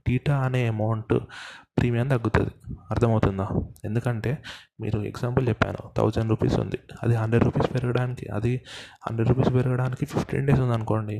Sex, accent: male, native